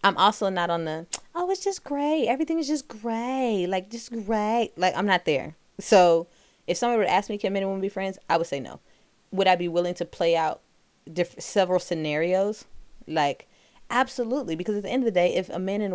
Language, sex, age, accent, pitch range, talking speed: English, female, 20-39, American, 160-210 Hz, 220 wpm